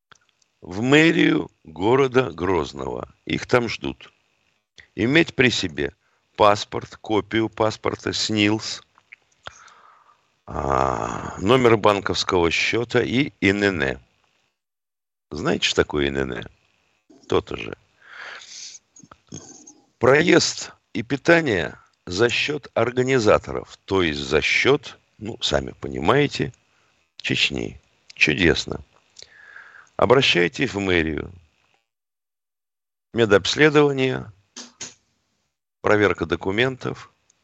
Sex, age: male, 50-69